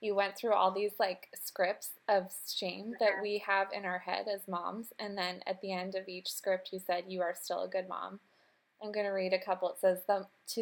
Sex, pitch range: female, 185-215 Hz